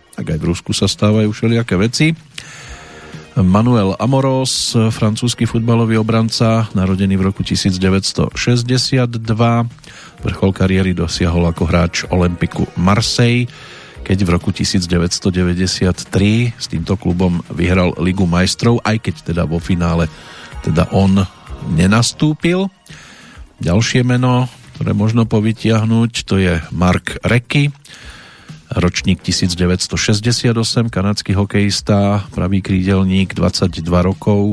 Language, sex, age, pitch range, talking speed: Slovak, male, 40-59, 90-115 Hz, 105 wpm